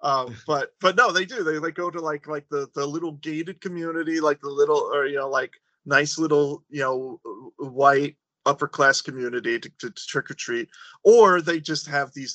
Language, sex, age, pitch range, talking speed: English, male, 30-49, 135-175 Hz, 210 wpm